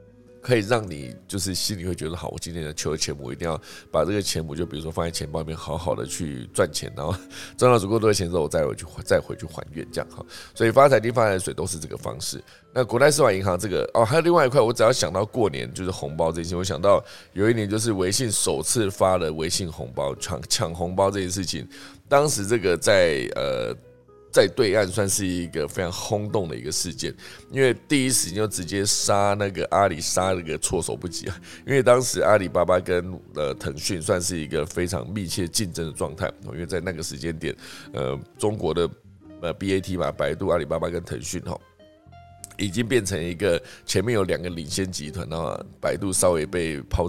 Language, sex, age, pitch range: Chinese, male, 20-39, 85-105 Hz